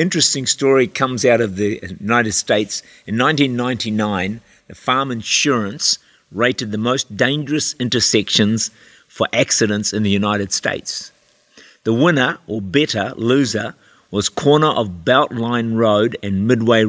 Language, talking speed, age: English, 130 wpm, 50-69